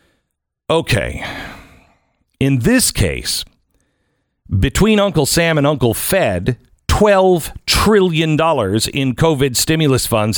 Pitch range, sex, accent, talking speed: 115-170 Hz, male, American, 100 wpm